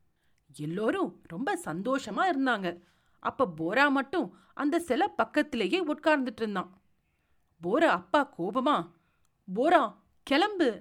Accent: native